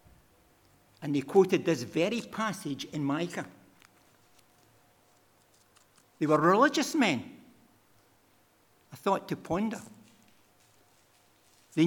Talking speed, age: 85 wpm, 60-79